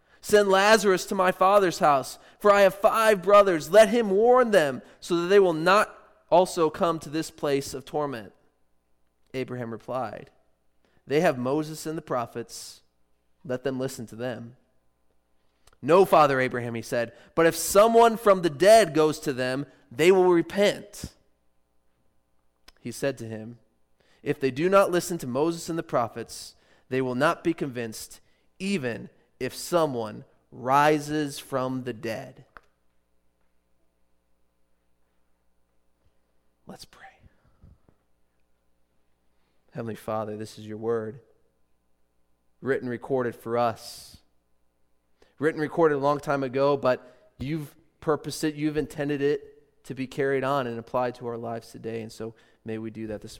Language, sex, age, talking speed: English, male, 20-39, 140 wpm